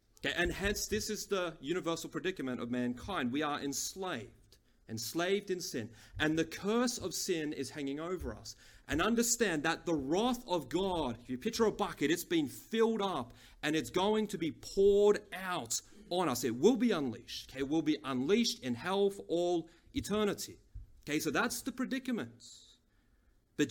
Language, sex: English, male